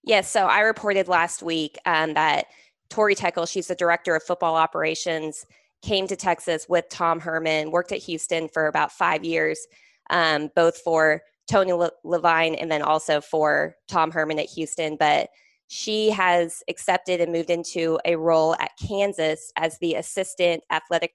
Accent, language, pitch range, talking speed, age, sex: American, English, 160-185 Hz, 160 wpm, 20-39, female